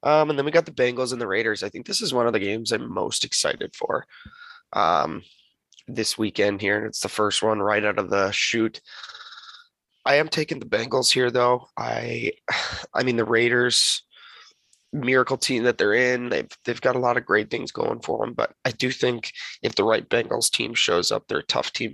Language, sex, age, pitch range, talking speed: English, male, 20-39, 110-140 Hz, 215 wpm